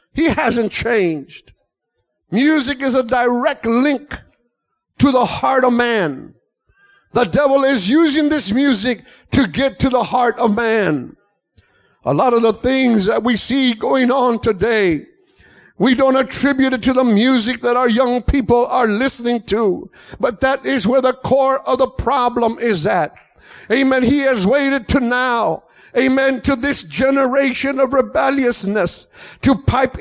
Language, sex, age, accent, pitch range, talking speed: English, male, 60-79, American, 240-275 Hz, 150 wpm